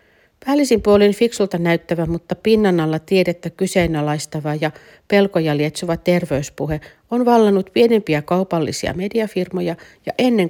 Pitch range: 160-205 Hz